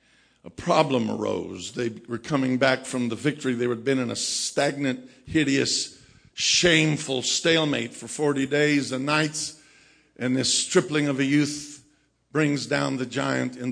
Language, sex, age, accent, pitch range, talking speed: English, male, 50-69, American, 125-145 Hz, 155 wpm